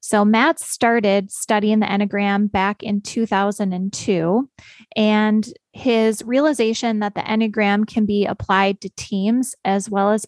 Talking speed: 135 wpm